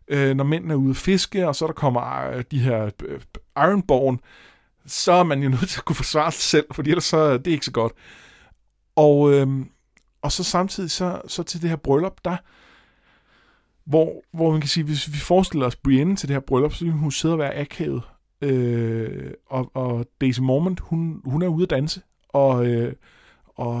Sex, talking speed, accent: male, 210 wpm, native